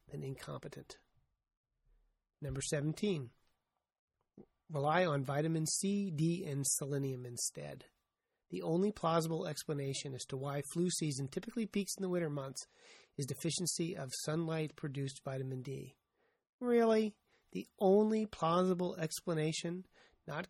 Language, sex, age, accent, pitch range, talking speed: English, male, 30-49, American, 140-170 Hz, 115 wpm